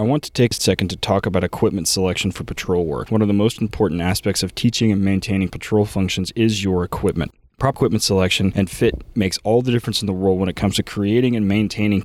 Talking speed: 240 wpm